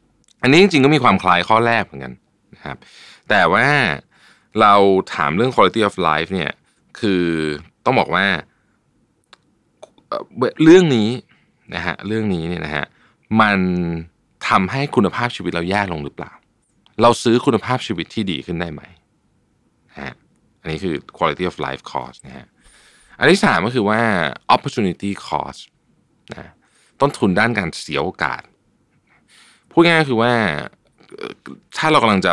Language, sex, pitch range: Thai, male, 80-110 Hz